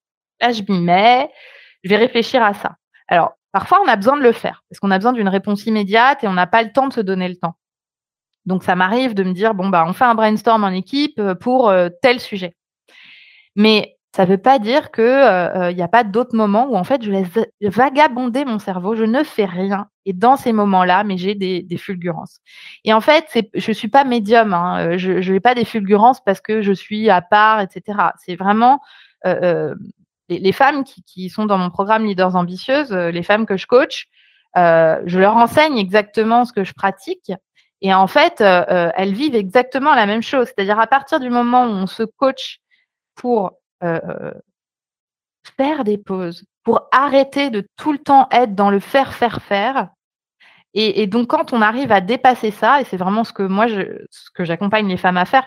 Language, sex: French, female